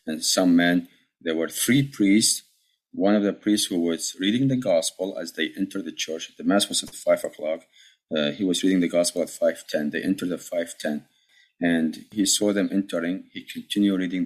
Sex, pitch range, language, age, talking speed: male, 85-110 Hz, English, 30-49, 195 wpm